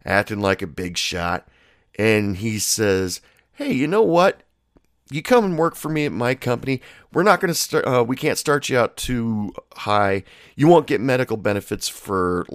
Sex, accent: male, American